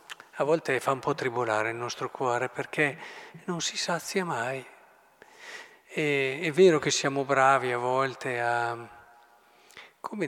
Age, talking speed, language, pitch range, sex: 50-69, 135 wpm, Italian, 135-185 Hz, male